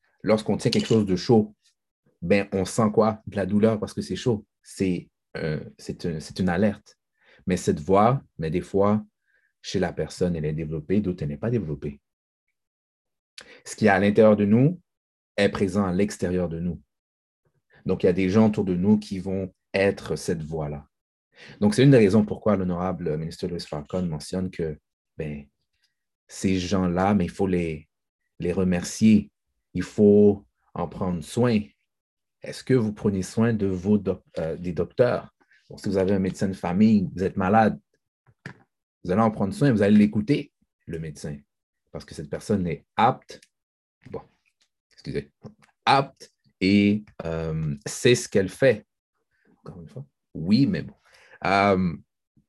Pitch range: 85-105 Hz